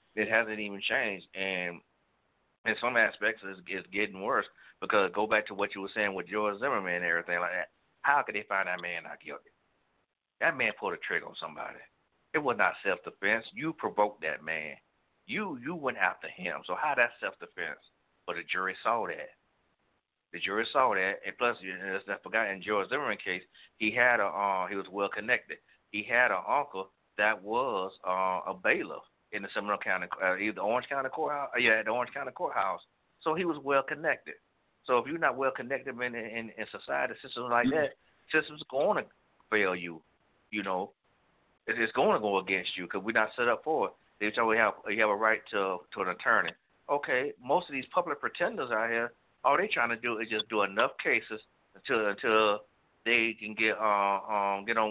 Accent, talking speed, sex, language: American, 200 wpm, male, English